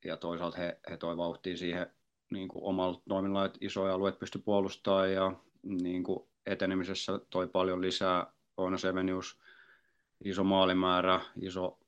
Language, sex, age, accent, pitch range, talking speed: Finnish, male, 30-49, native, 85-95 Hz, 130 wpm